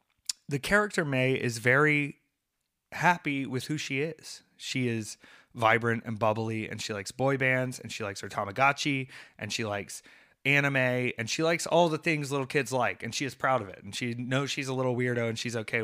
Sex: male